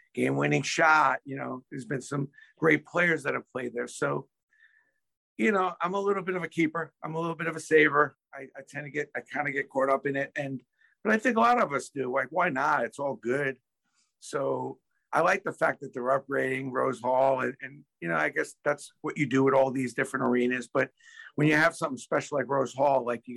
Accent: American